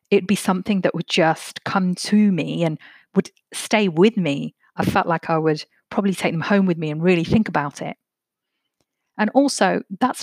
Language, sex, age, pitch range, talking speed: English, female, 40-59, 160-210 Hz, 195 wpm